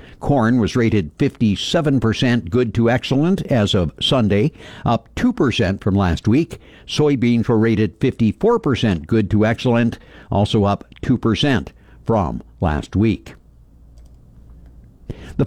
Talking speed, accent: 115 wpm, American